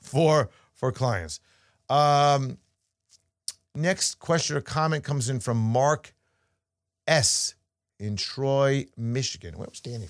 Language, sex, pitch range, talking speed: English, male, 95-145 Hz, 115 wpm